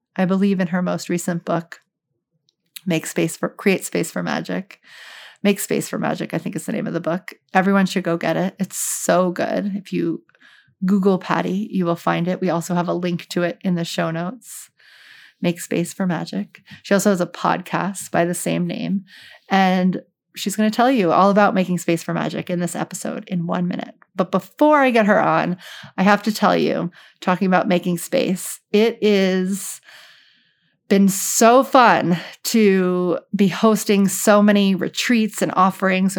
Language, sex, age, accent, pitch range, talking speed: English, female, 30-49, American, 175-200 Hz, 185 wpm